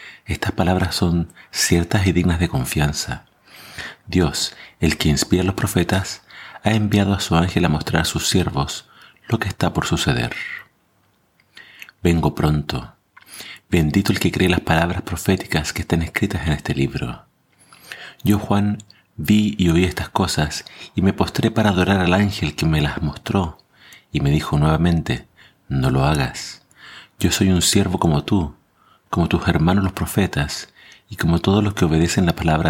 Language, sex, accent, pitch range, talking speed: Spanish, male, Argentinian, 75-95 Hz, 165 wpm